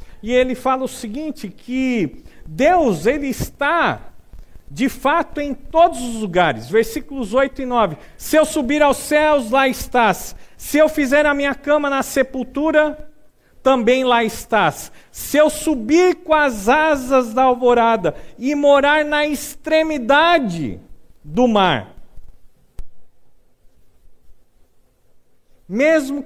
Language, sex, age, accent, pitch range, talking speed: Portuguese, male, 50-69, Brazilian, 180-280 Hz, 120 wpm